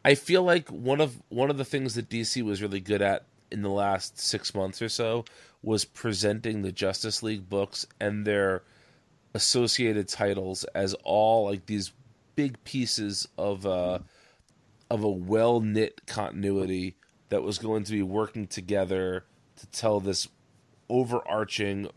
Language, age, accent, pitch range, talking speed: English, 30-49, American, 100-120 Hz, 150 wpm